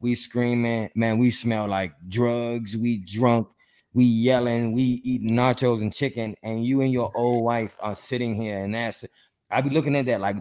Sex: male